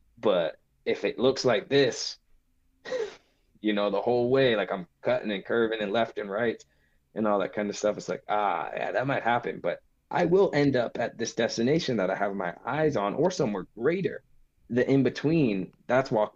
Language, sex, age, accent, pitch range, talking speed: English, male, 20-39, American, 85-115 Hz, 200 wpm